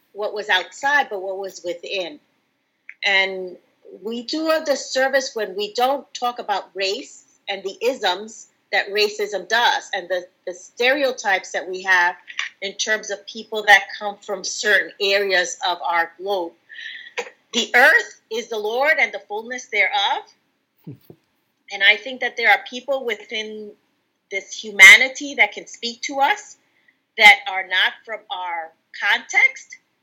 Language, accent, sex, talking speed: English, American, female, 145 wpm